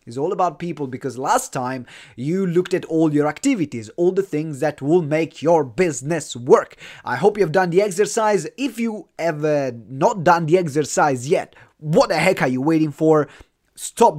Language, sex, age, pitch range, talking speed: English, male, 20-39, 130-170 Hz, 190 wpm